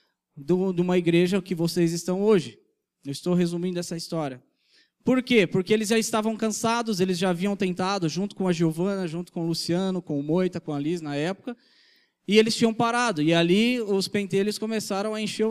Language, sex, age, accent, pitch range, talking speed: Portuguese, male, 20-39, Brazilian, 185-245 Hz, 195 wpm